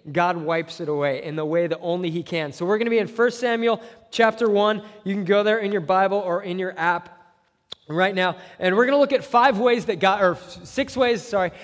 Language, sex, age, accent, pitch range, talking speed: English, male, 20-39, American, 170-215 Hz, 245 wpm